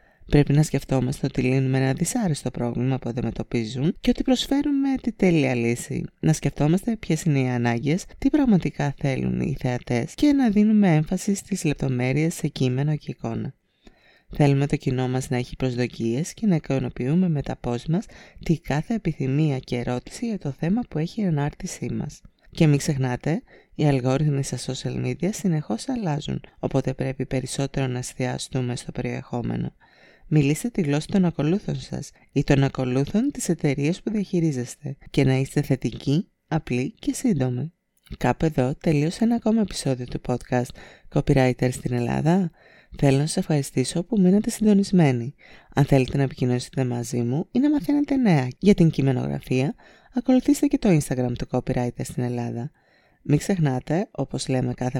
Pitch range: 130-175 Hz